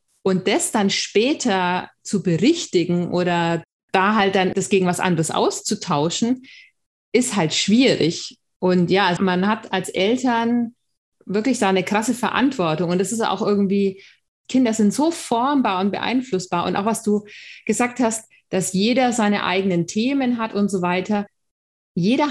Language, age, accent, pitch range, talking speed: German, 30-49, German, 185-230 Hz, 150 wpm